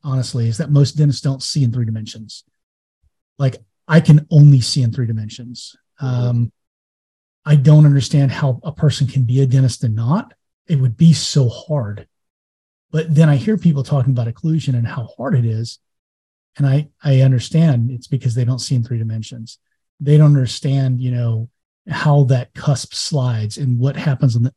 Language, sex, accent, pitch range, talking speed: English, male, American, 120-145 Hz, 185 wpm